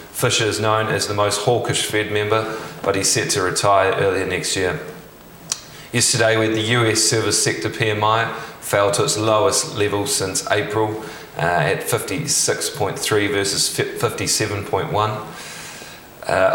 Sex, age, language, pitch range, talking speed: male, 20-39, English, 100-110 Hz, 140 wpm